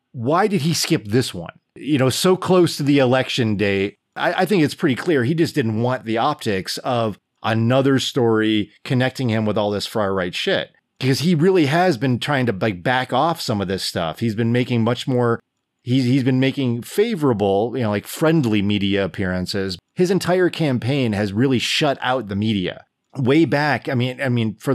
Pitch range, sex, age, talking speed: 105-135 Hz, male, 30-49, 195 wpm